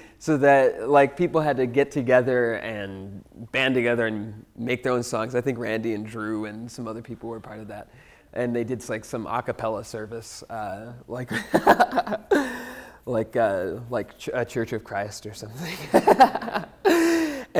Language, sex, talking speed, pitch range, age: English, male, 165 wpm, 115-160 Hz, 20-39